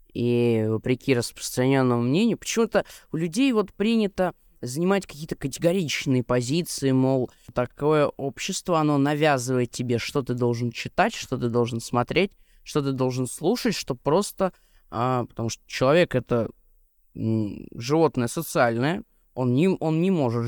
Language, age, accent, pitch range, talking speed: Russian, 20-39, native, 120-165 Hz, 125 wpm